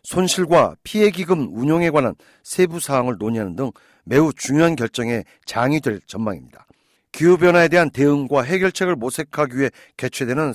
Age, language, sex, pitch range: 50-69, Korean, male, 140-185 Hz